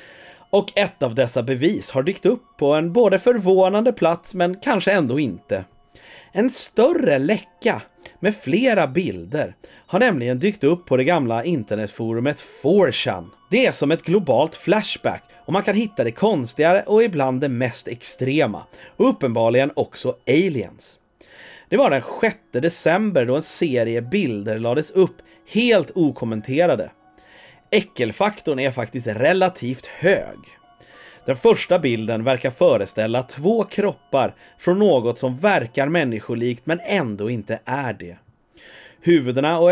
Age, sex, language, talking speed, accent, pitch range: 30-49, male, English, 135 wpm, Swedish, 120-190 Hz